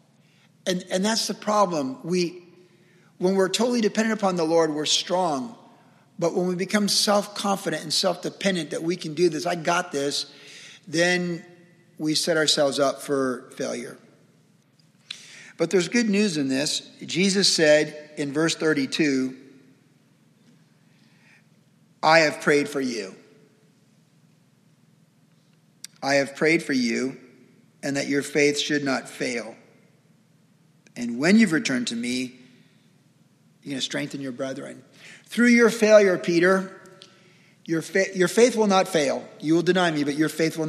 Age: 50-69